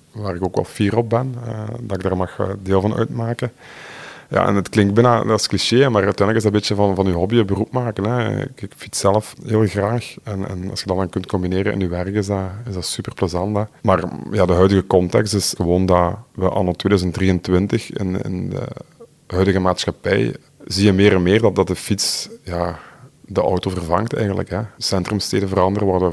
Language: Dutch